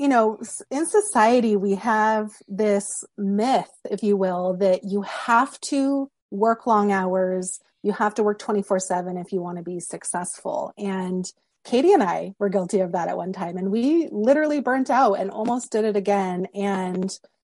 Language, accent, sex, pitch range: English, American, female, 195-245 Hz